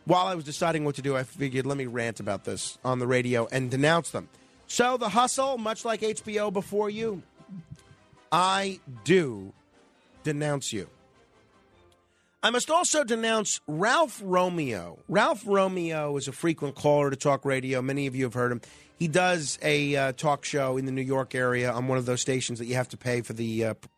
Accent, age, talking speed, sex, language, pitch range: American, 30-49, 195 wpm, male, English, 135-210 Hz